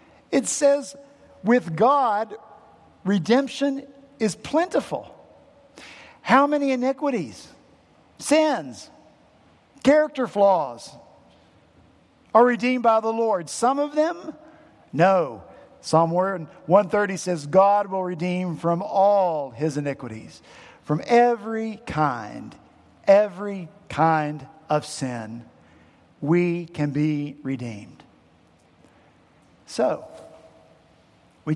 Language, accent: English, American